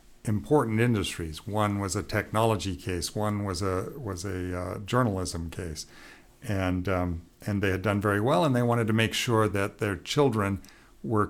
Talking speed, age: 175 wpm, 60-79